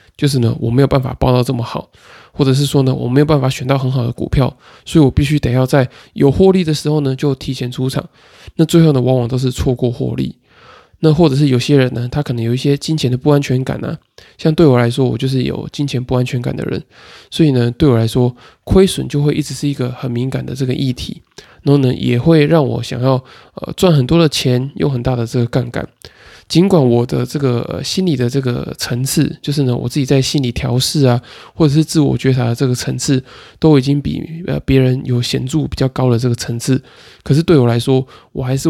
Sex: male